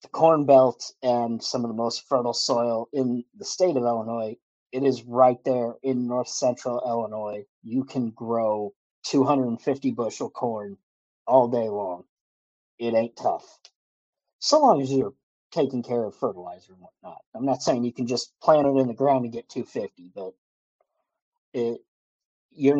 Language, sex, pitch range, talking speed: English, male, 115-140 Hz, 165 wpm